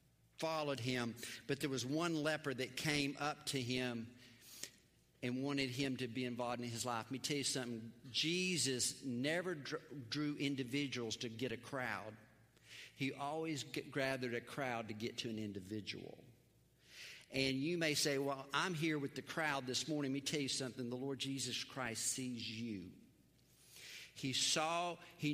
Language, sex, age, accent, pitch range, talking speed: English, male, 50-69, American, 115-150 Hz, 165 wpm